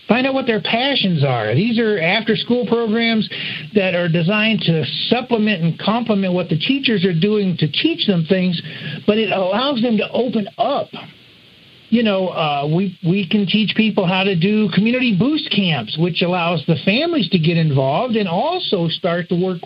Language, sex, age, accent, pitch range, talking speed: English, male, 50-69, American, 170-225 Hz, 180 wpm